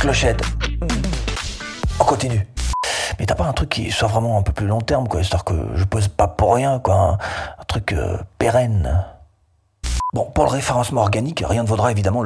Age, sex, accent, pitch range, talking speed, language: 40-59, male, French, 105-155 Hz, 190 wpm, French